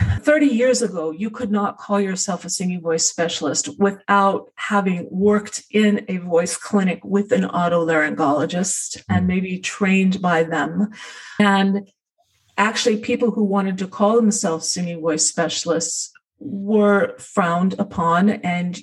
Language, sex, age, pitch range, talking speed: English, female, 40-59, 180-220 Hz, 135 wpm